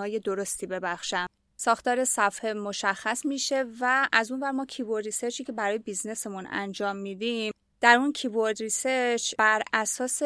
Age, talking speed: 30-49, 145 wpm